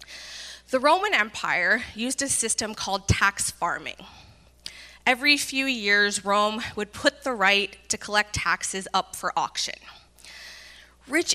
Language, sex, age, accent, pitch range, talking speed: English, female, 20-39, American, 190-255 Hz, 125 wpm